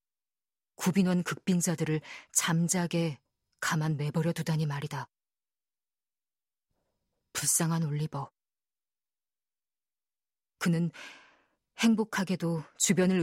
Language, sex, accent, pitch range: Korean, female, native, 160-195 Hz